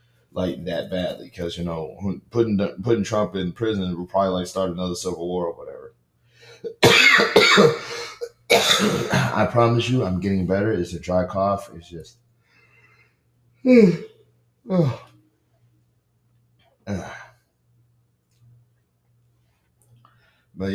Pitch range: 90-120 Hz